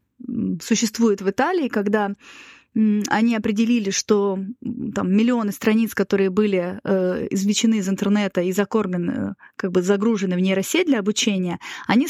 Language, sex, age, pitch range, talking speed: Russian, female, 20-39, 195-240 Hz, 120 wpm